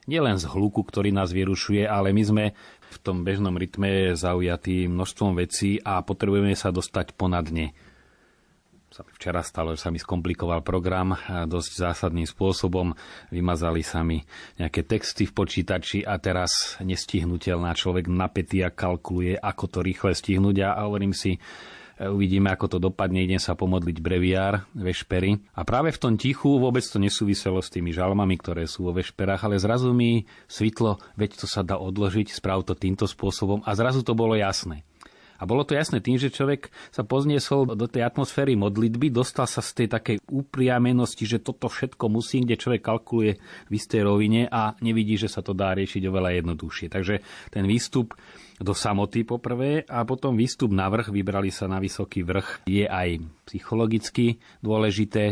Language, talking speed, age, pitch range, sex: Slovak, 170 wpm, 30-49, 90-110 Hz, male